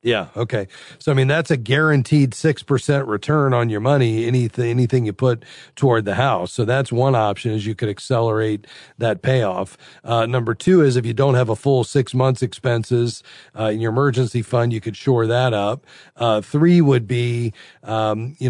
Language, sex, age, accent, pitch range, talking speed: English, male, 40-59, American, 110-130 Hz, 190 wpm